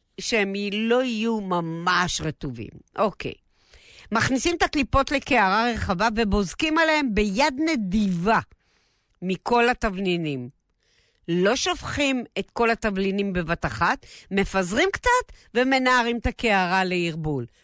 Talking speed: 105 wpm